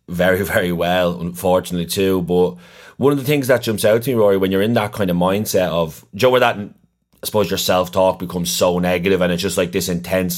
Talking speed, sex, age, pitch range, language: 245 wpm, male, 30-49, 90-100 Hz, English